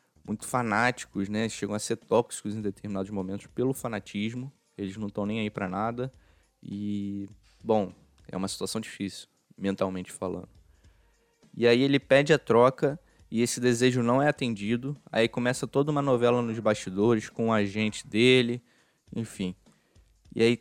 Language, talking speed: Portuguese, 155 wpm